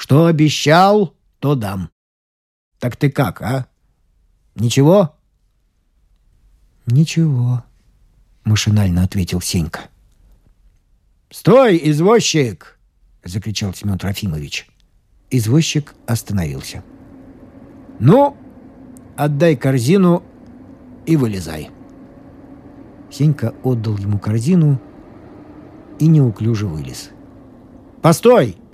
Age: 50-69